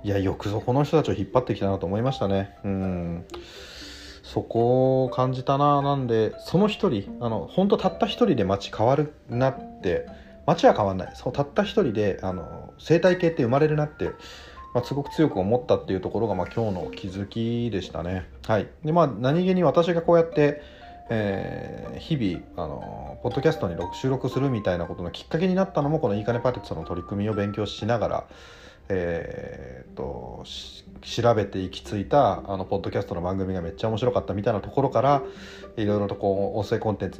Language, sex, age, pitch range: Japanese, male, 40-59, 95-135 Hz